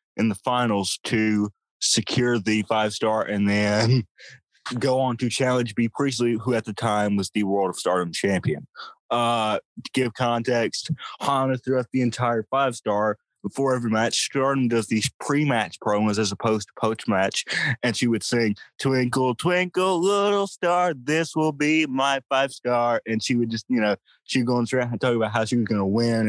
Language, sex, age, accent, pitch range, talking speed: English, male, 20-39, American, 110-130 Hz, 180 wpm